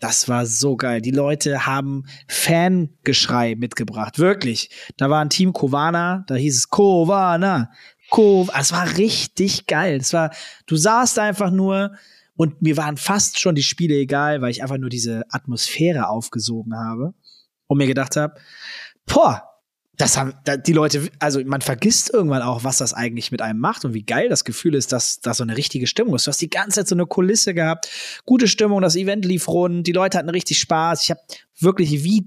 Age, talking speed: 20-39, 195 wpm